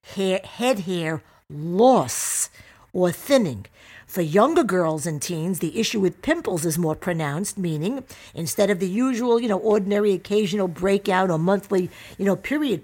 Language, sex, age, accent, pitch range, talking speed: English, female, 50-69, American, 160-215 Hz, 150 wpm